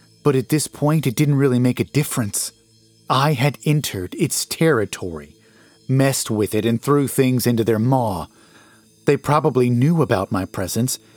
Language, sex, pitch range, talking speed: English, male, 110-140 Hz, 160 wpm